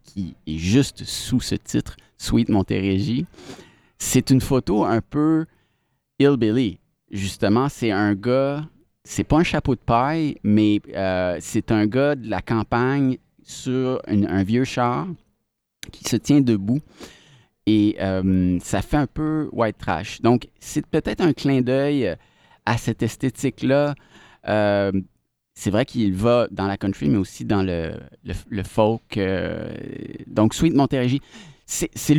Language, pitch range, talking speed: French, 105-135 Hz, 145 wpm